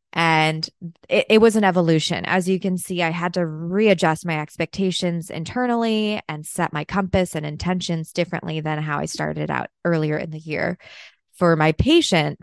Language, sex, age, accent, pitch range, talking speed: English, female, 20-39, American, 155-185 Hz, 175 wpm